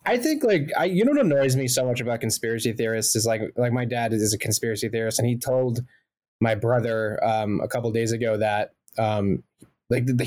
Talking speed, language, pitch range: 230 wpm, English, 115-145 Hz